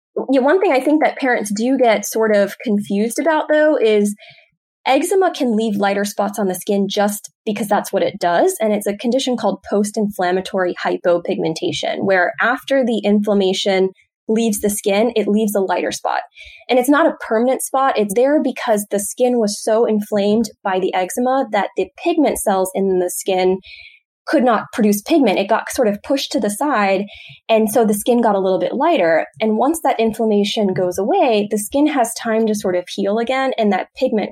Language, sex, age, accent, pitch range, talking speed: English, female, 10-29, American, 200-250 Hz, 190 wpm